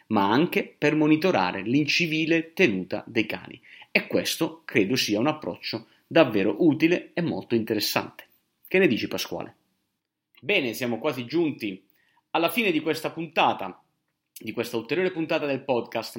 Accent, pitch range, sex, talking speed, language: native, 115-160 Hz, male, 140 wpm, Italian